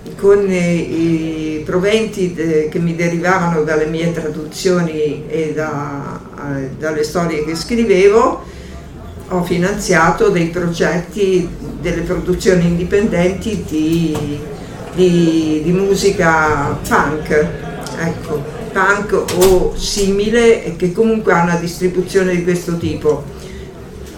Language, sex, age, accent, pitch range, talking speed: Italian, female, 50-69, native, 160-195 Hz, 95 wpm